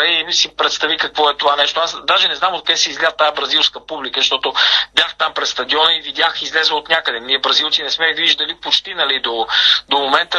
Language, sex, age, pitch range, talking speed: Bulgarian, male, 40-59, 150-185 Hz, 220 wpm